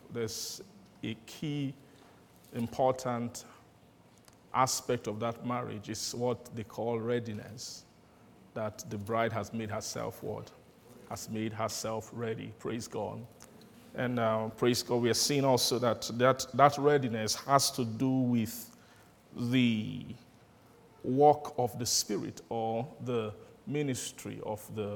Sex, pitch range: male, 110-130 Hz